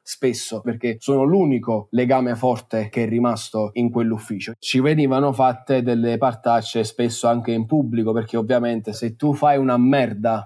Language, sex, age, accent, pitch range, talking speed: Italian, male, 20-39, native, 120-135 Hz, 155 wpm